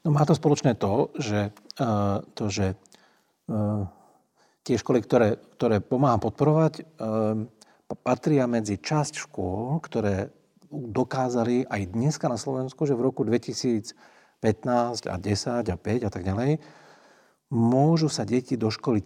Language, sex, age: Slovak, male, 50-69